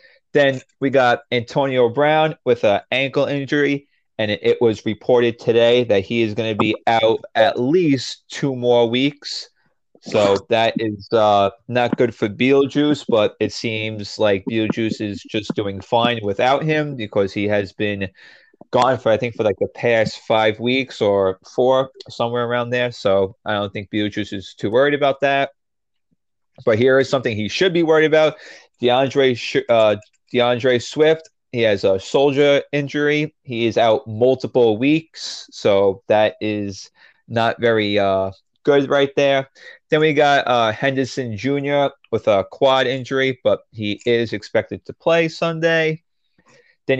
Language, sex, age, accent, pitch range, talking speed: English, male, 30-49, American, 110-135 Hz, 165 wpm